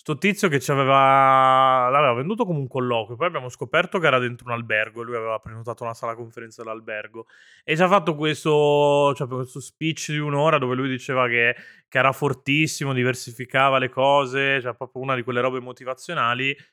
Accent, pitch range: native, 120-140 Hz